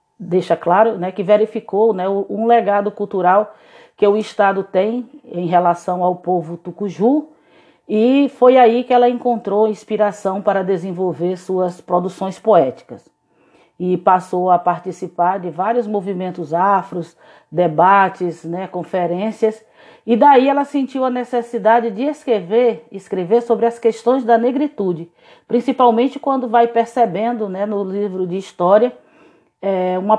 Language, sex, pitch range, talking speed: Portuguese, female, 180-230 Hz, 130 wpm